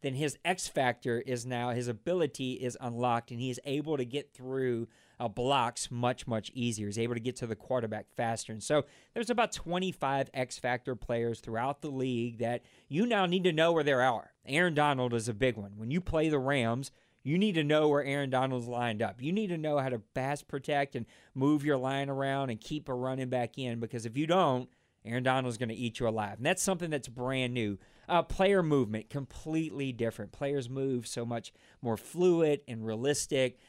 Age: 40-59